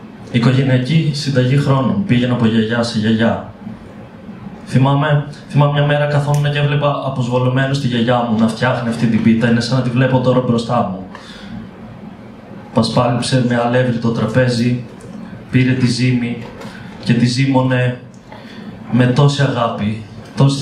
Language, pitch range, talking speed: Greek, 115-140 Hz, 135 wpm